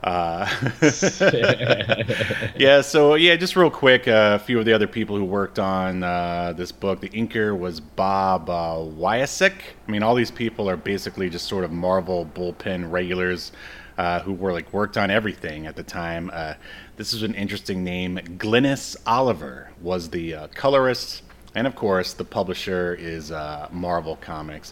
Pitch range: 90-115 Hz